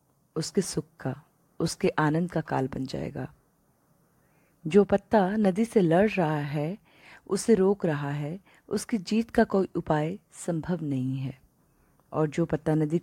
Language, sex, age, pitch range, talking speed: Hindi, female, 30-49, 150-200 Hz, 145 wpm